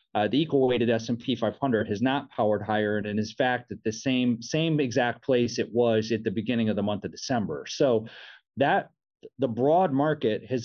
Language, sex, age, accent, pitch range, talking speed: English, male, 30-49, American, 115-135 Hz, 190 wpm